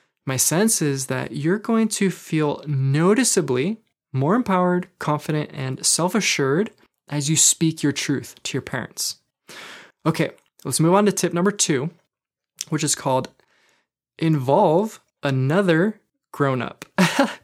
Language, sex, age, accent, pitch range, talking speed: English, male, 20-39, American, 135-180 Hz, 125 wpm